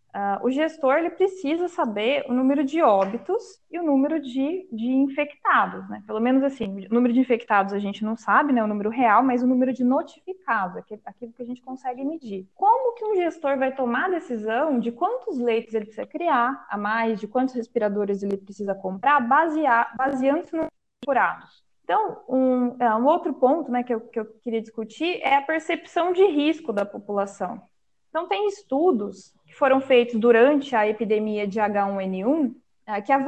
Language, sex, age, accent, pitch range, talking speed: Portuguese, female, 20-39, Brazilian, 225-310 Hz, 180 wpm